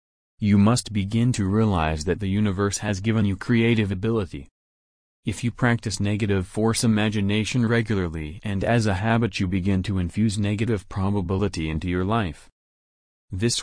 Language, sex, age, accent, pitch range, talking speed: English, male, 30-49, American, 90-115 Hz, 150 wpm